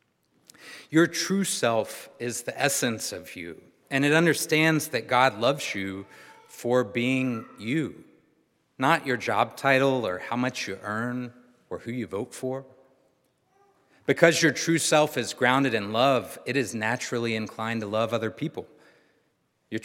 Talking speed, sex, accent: 150 wpm, male, American